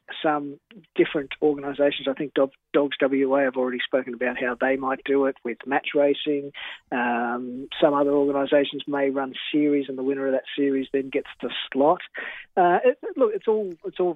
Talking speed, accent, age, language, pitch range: 180 wpm, Australian, 40-59, English, 135-150 Hz